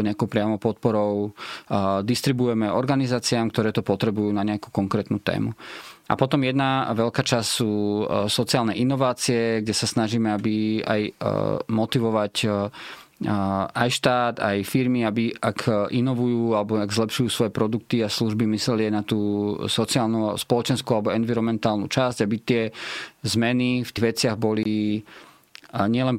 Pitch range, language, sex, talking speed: 110-125 Hz, Slovak, male, 125 wpm